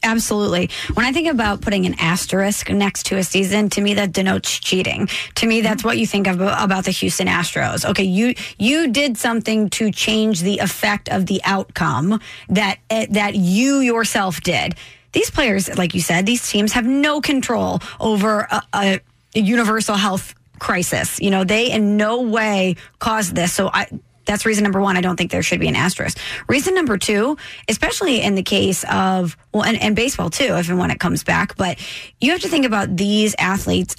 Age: 20-39